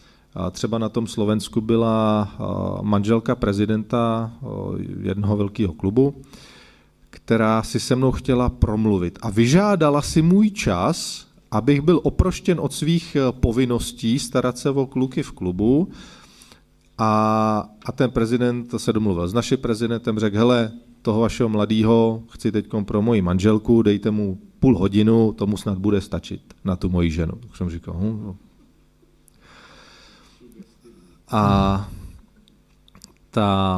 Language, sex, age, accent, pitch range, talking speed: Czech, male, 40-59, native, 100-130 Hz, 130 wpm